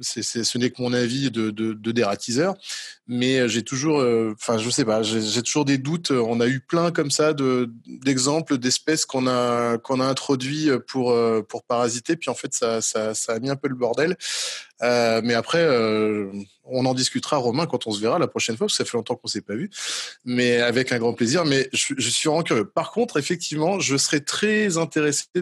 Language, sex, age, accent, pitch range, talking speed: French, male, 20-39, French, 120-150 Hz, 225 wpm